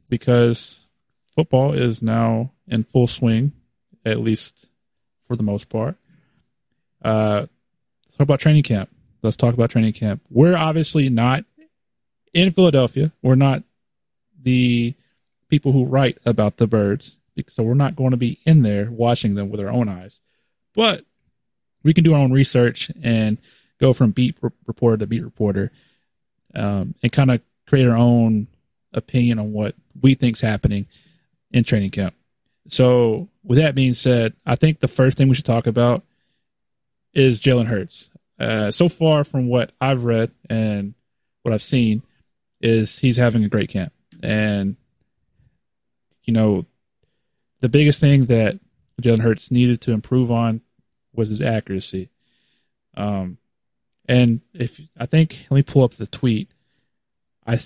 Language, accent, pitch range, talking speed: English, American, 110-135 Hz, 155 wpm